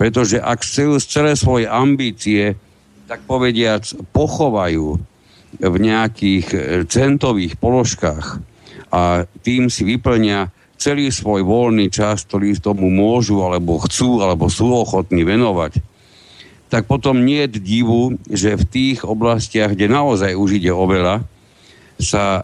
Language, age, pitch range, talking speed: Slovak, 60-79, 90-115 Hz, 120 wpm